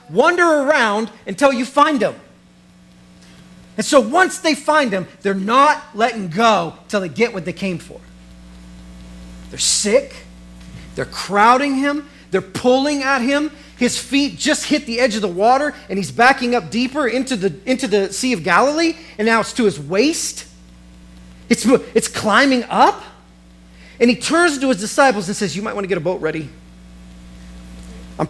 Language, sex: English, male